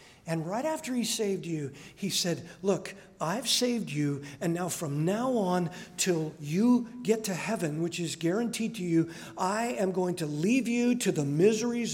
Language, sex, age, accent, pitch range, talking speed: English, male, 50-69, American, 165-230 Hz, 180 wpm